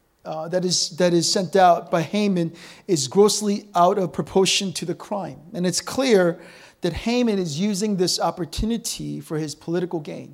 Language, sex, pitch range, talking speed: English, male, 175-210 Hz, 175 wpm